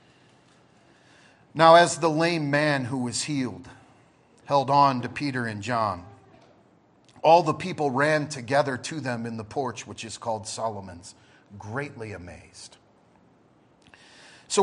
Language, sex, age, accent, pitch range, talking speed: English, male, 40-59, American, 120-185 Hz, 125 wpm